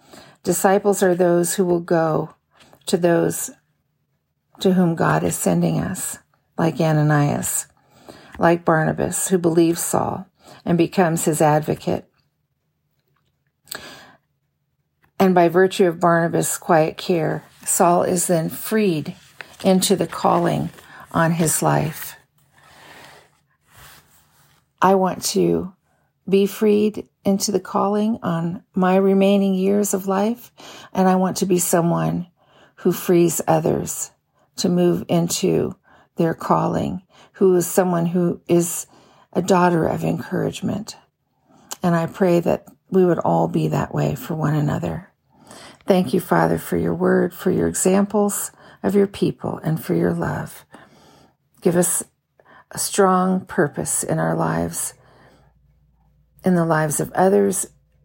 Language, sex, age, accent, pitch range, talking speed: English, female, 50-69, American, 160-190 Hz, 125 wpm